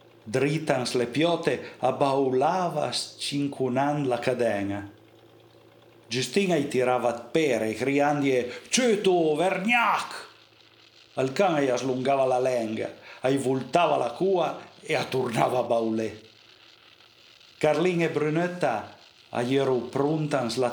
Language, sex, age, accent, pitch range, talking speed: Italian, male, 50-69, native, 120-145 Hz, 100 wpm